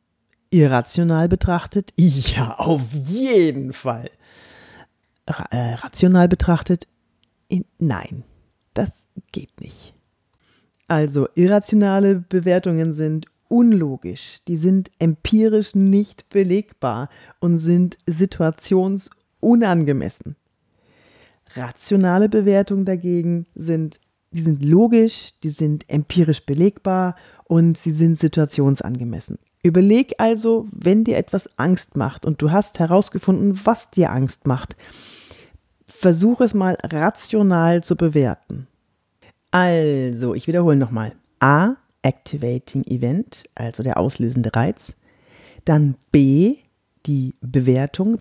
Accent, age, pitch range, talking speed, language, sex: German, 40-59, 130-185 Hz, 95 wpm, German, female